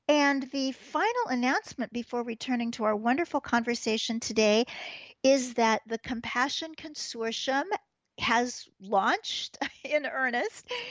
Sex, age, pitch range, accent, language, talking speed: female, 50-69, 205-255 Hz, American, English, 110 wpm